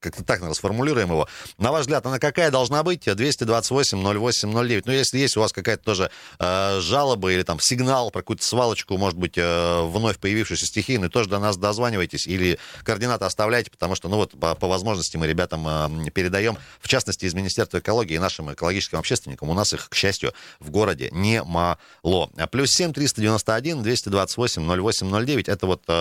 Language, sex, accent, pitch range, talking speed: Russian, male, native, 95-125 Hz, 170 wpm